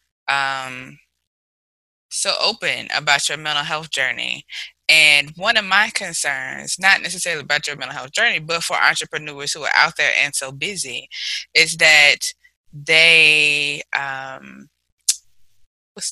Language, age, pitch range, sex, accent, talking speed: English, 20-39, 135-170 Hz, female, American, 130 wpm